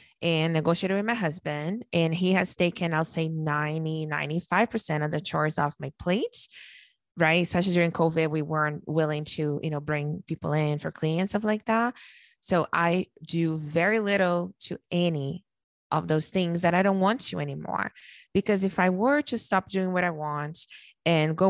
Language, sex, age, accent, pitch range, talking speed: English, female, 20-39, American, 155-190 Hz, 180 wpm